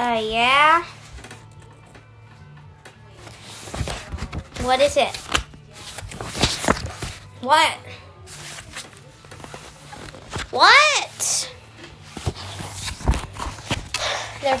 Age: 10-29